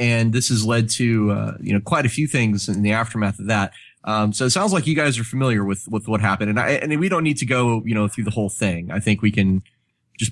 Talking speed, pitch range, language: 285 wpm, 100-125 Hz, English